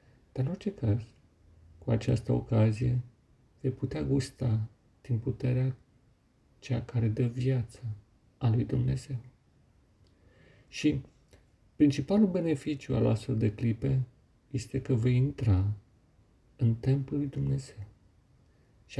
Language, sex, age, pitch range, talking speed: Romanian, male, 40-59, 115-140 Hz, 110 wpm